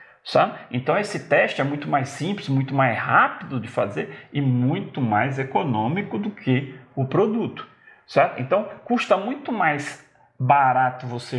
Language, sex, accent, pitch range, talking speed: Portuguese, male, Brazilian, 130-220 Hz, 150 wpm